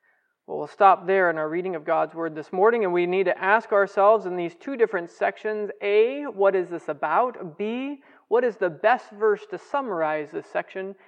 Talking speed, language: 205 wpm, English